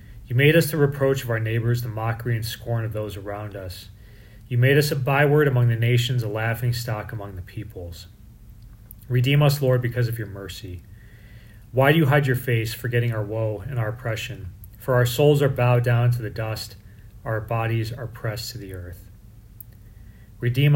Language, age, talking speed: English, 30-49, 190 wpm